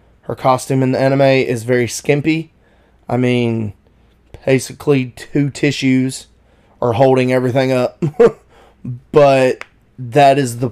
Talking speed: 120 wpm